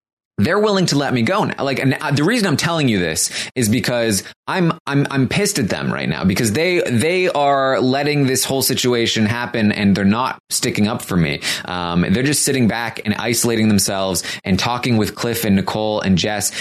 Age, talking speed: 20-39, 205 wpm